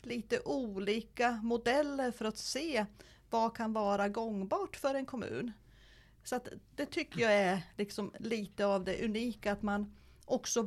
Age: 40-59